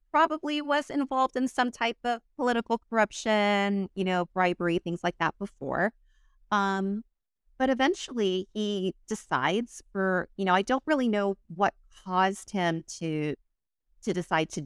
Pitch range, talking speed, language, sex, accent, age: 155-205 Hz, 145 wpm, English, female, American, 30-49